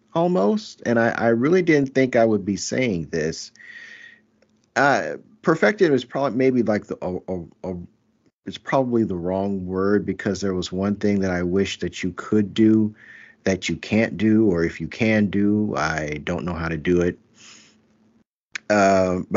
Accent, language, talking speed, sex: American, English, 175 wpm, male